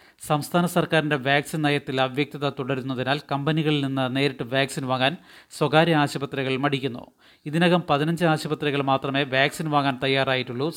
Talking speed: 115 wpm